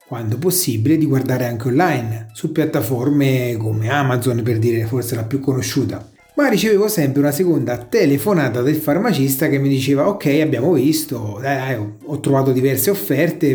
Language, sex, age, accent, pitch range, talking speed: Italian, male, 30-49, native, 130-175 Hz, 150 wpm